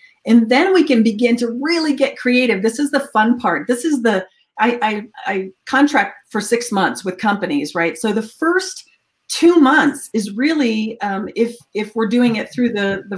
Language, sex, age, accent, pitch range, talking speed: English, female, 40-59, American, 205-270 Hz, 195 wpm